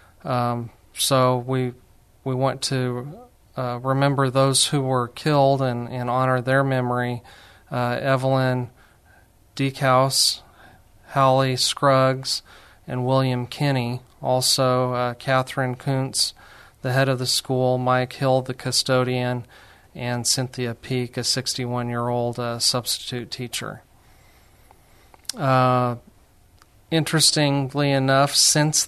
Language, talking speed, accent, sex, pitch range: English, 105 wpm, American, male, 120-135 Hz